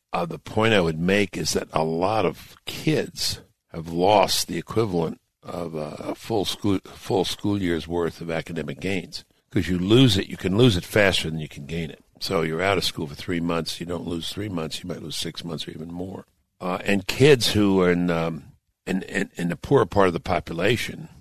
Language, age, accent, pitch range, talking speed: English, 60-79, American, 80-95 Hz, 220 wpm